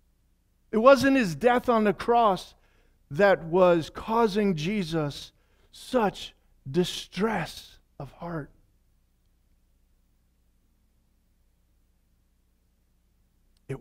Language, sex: English, male